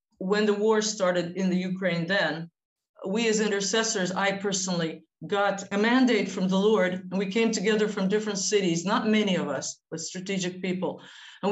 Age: 50-69